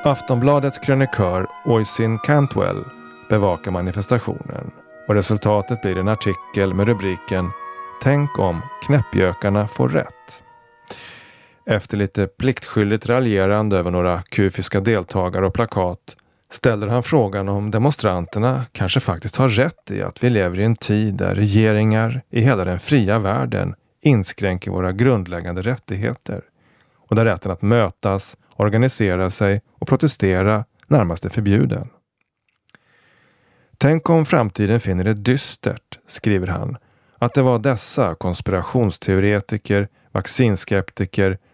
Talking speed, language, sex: 115 wpm, Swedish, male